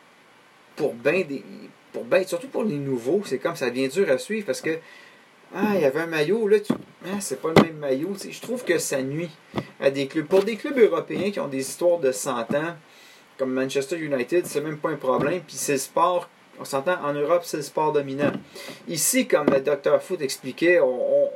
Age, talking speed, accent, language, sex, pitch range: 30-49, 215 wpm, Canadian, French, male, 135-190 Hz